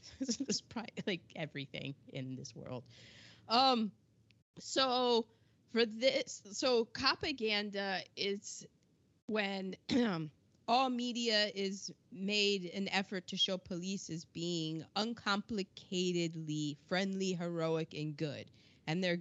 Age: 20-39